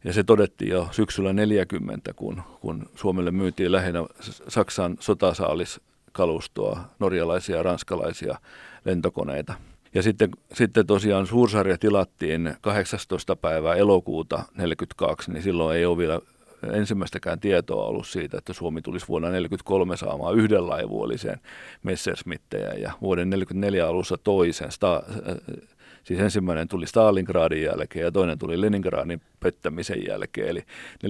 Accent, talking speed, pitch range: native, 120 wpm, 85-105 Hz